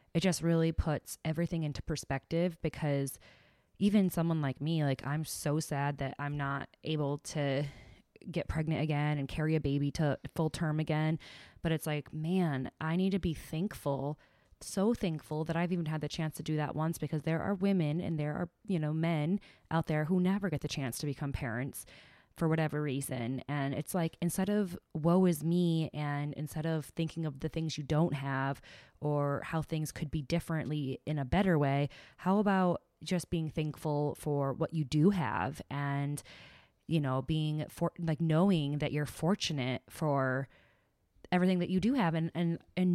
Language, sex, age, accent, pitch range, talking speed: English, female, 20-39, American, 150-175 Hz, 185 wpm